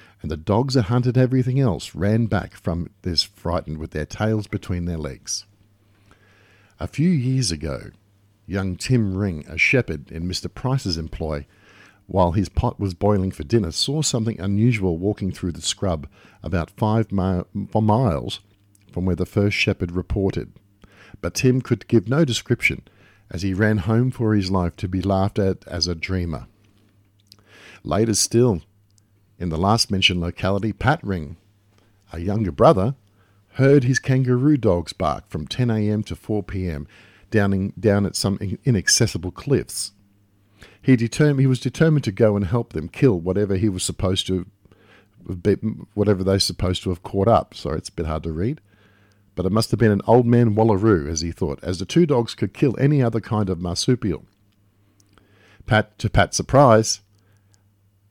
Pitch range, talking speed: 95-110 Hz, 165 wpm